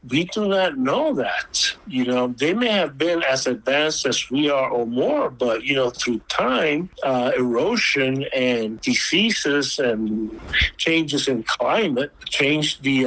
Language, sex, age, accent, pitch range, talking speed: English, male, 60-79, American, 130-165 Hz, 150 wpm